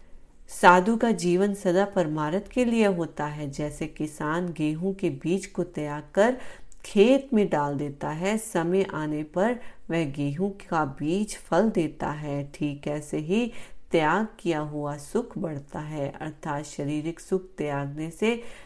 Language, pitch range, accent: Hindi, 150-190 Hz, native